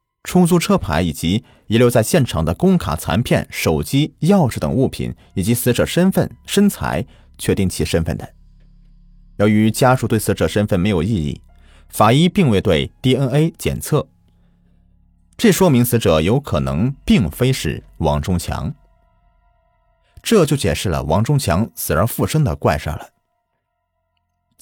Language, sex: Chinese, male